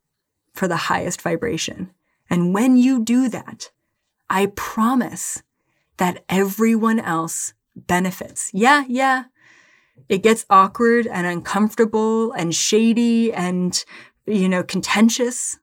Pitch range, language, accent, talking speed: 180-230 Hz, English, American, 110 wpm